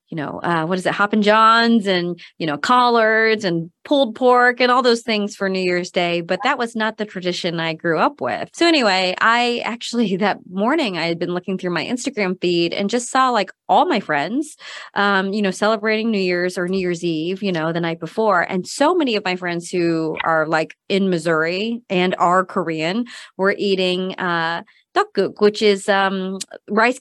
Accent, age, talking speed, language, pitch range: American, 30-49, 205 wpm, English, 175-230 Hz